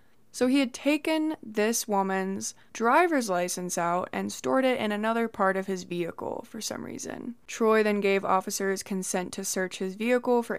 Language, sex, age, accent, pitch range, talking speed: English, female, 20-39, American, 180-225 Hz, 175 wpm